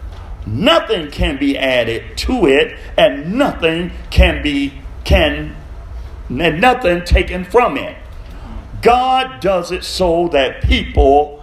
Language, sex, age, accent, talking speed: English, male, 50-69, American, 110 wpm